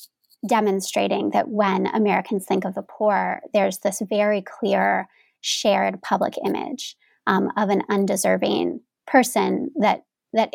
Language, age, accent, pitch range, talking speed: English, 30-49, American, 200-240 Hz, 125 wpm